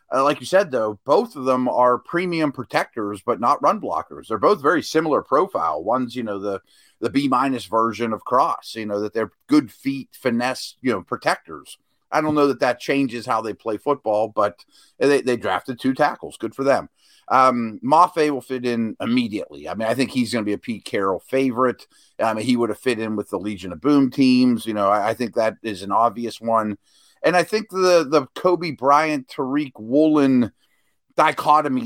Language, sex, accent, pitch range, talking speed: English, male, American, 115-150 Hz, 200 wpm